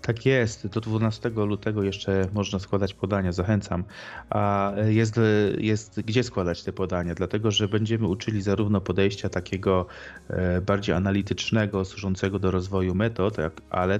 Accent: native